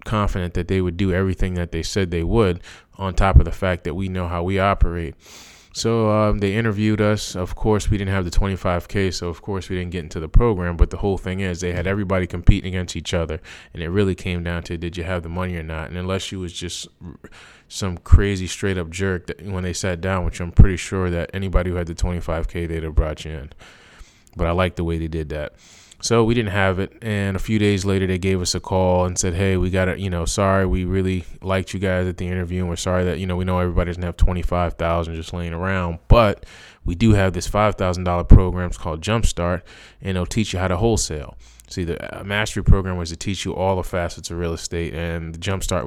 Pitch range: 85-95 Hz